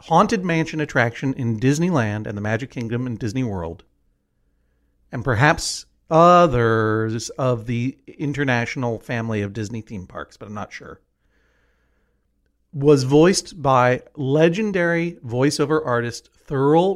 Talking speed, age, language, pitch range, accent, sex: 120 wpm, 50-69, English, 115-165 Hz, American, male